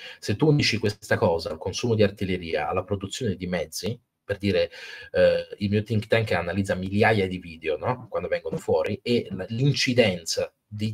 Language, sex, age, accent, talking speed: Italian, male, 30-49, native, 170 wpm